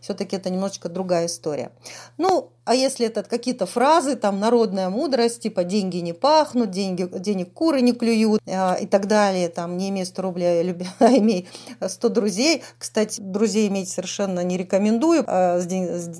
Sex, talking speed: female, 160 wpm